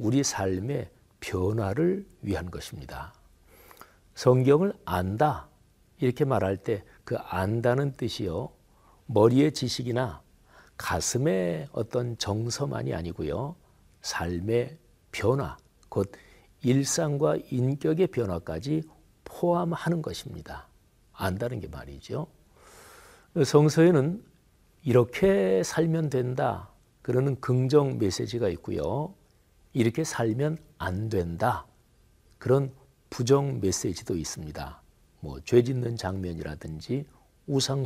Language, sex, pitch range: Korean, male, 95-140 Hz